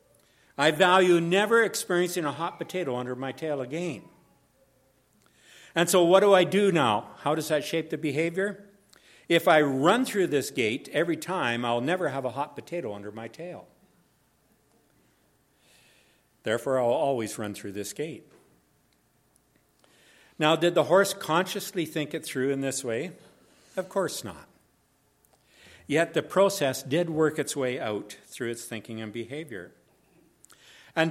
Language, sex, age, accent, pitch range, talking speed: English, male, 60-79, American, 125-175 Hz, 145 wpm